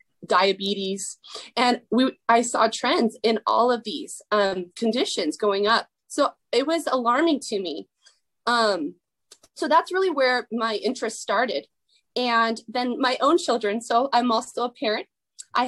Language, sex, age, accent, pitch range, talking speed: English, female, 20-39, American, 230-290 Hz, 150 wpm